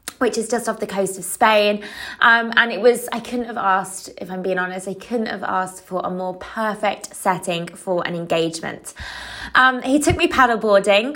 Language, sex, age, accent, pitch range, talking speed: English, female, 20-39, British, 185-250 Hz, 200 wpm